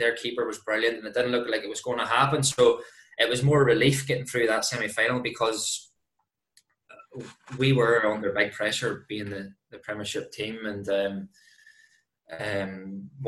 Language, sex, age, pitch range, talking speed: English, male, 20-39, 115-135 Hz, 165 wpm